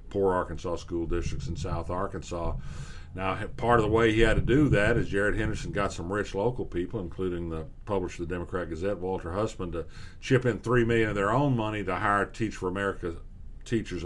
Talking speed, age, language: 210 wpm, 50-69, English